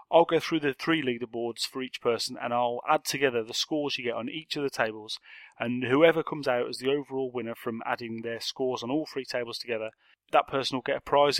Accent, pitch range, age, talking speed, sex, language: British, 120-160 Hz, 30-49, 235 wpm, male, English